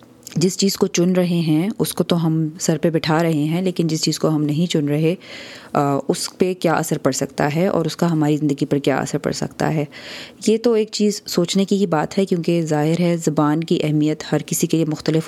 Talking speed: 235 wpm